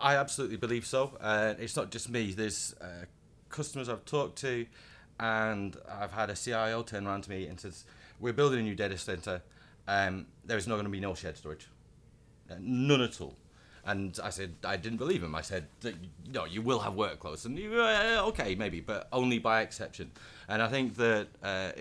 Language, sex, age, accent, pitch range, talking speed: English, male, 30-49, British, 95-120 Hz, 205 wpm